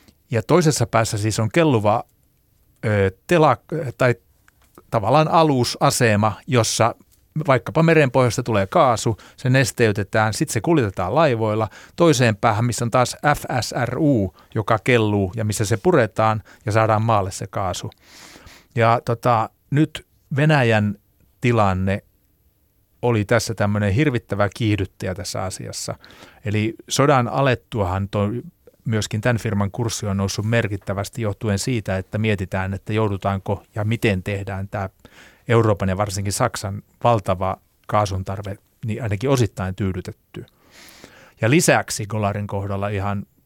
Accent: native